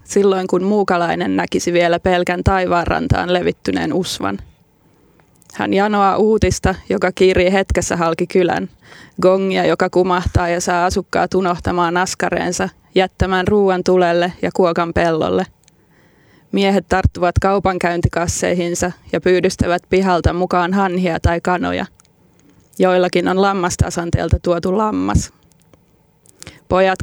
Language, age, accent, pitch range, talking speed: Finnish, 20-39, native, 170-190 Hz, 105 wpm